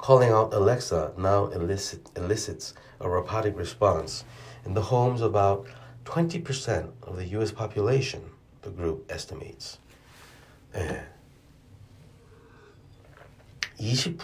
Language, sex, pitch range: Korean, male, 85-130 Hz